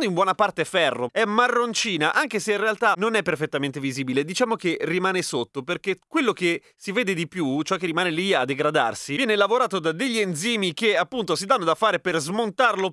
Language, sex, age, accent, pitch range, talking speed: Italian, male, 30-49, native, 155-220 Hz, 205 wpm